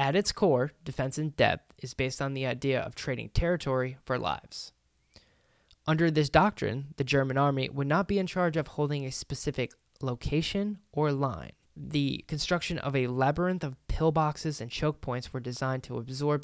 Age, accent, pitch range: 20-39, American, 130-160 Hz